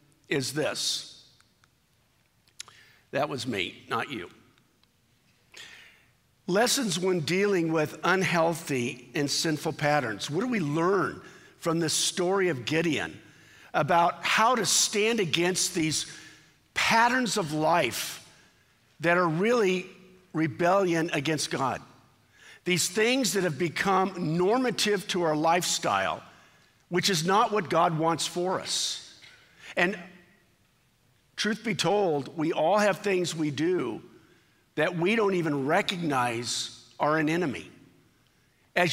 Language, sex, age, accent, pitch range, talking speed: English, male, 50-69, American, 155-190 Hz, 115 wpm